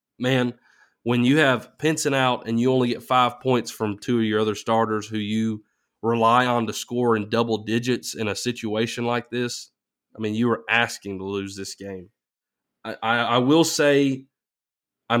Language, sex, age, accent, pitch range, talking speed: English, male, 20-39, American, 110-125 Hz, 185 wpm